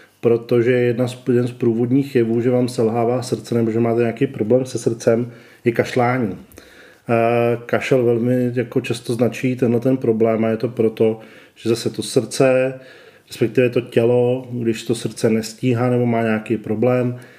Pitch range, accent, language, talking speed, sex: 115-130 Hz, native, Czech, 160 wpm, male